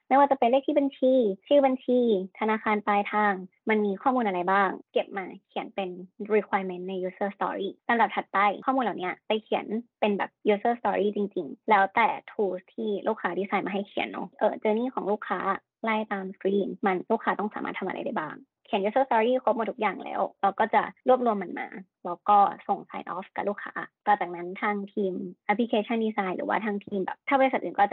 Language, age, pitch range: Thai, 20-39, 195-230 Hz